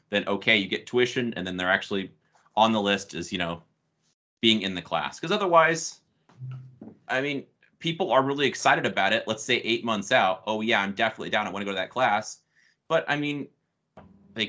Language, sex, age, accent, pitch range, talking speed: English, male, 30-49, American, 95-120 Hz, 205 wpm